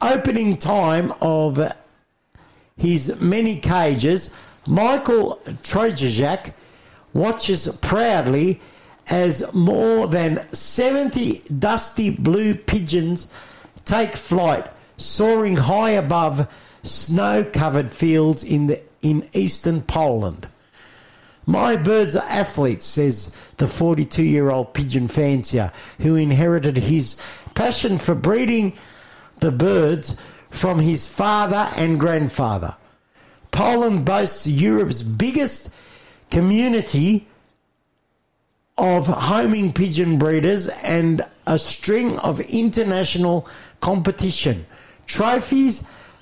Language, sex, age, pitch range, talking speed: English, male, 60-79, 150-205 Hz, 85 wpm